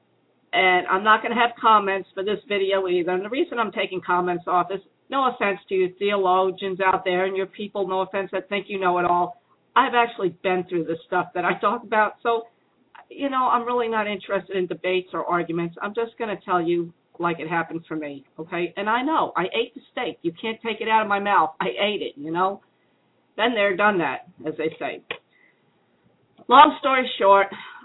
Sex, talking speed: female, 215 wpm